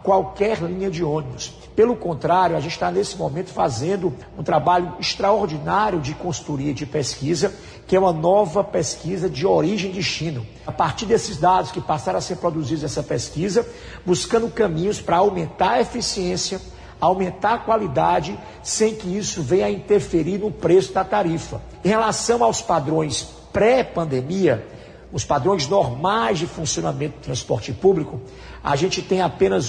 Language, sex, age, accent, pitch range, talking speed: Portuguese, male, 50-69, Brazilian, 155-195 Hz, 150 wpm